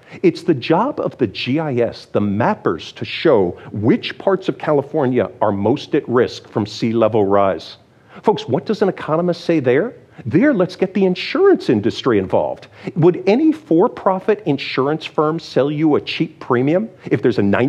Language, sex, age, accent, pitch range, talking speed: English, male, 50-69, American, 140-200 Hz, 165 wpm